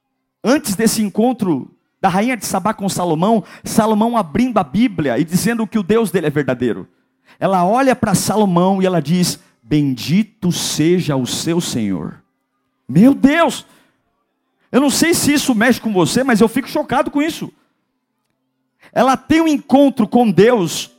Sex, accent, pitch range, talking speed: male, Brazilian, 195-270 Hz, 155 wpm